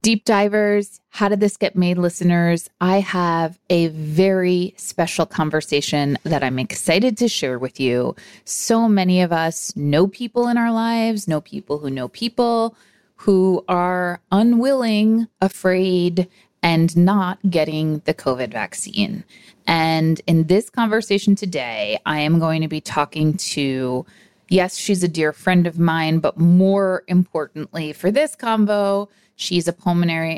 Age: 30-49